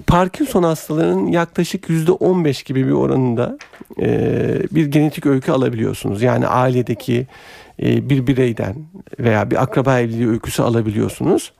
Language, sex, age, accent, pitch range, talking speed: Turkish, male, 50-69, native, 120-160 Hz, 110 wpm